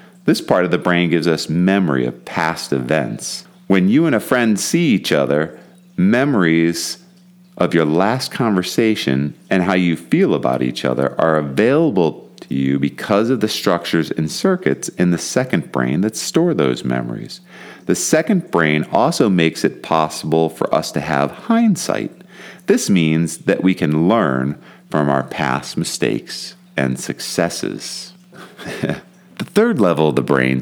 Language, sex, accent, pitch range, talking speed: English, male, American, 75-125 Hz, 155 wpm